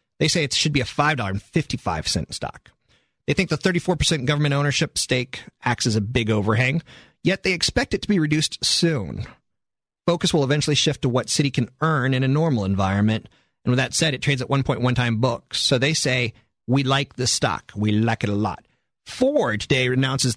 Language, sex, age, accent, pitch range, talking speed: English, male, 40-59, American, 115-155 Hz, 195 wpm